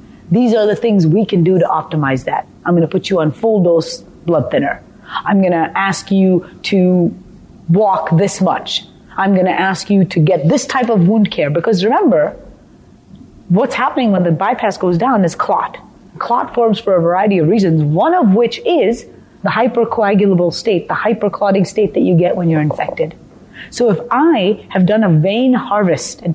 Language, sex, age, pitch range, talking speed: English, female, 30-49, 165-215 Hz, 190 wpm